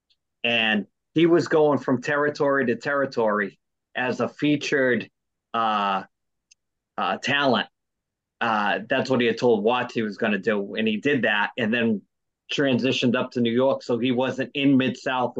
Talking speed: 165 wpm